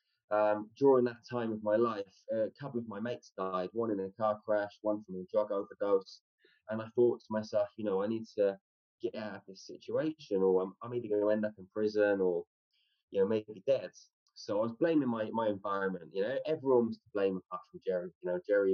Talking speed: 225 wpm